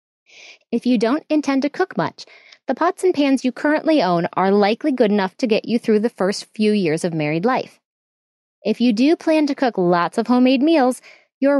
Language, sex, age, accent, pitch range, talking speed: English, female, 20-39, American, 205-280 Hz, 205 wpm